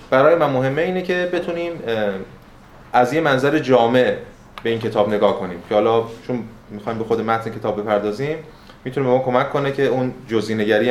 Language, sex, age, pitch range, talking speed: Persian, male, 20-39, 110-135 Hz, 175 wpm